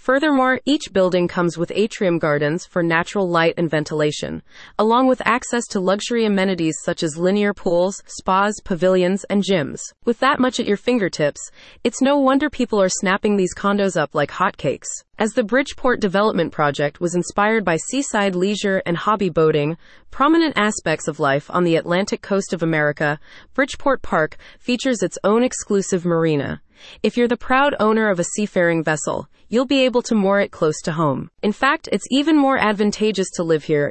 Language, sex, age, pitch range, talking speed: English, female, 30-49, 170-235 Hz, 175 wpm